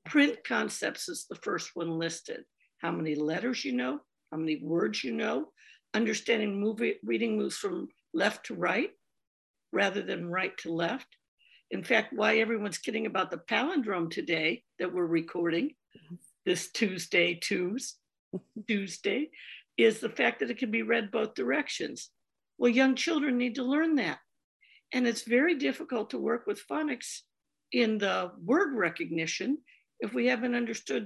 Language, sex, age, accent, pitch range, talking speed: English, female, 60-79, American, 175-255 Hz, 150 wpm